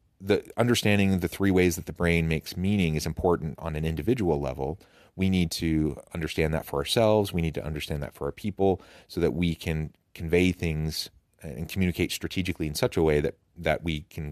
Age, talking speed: 30-49, 195 wpm